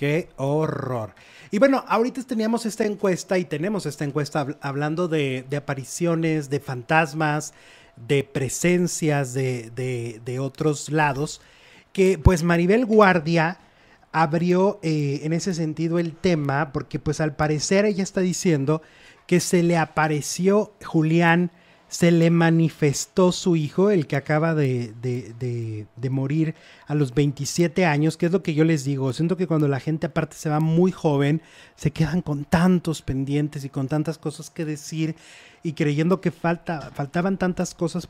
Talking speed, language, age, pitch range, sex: 150 wpm, Portuguese, 30-49, 145-175 Hz, male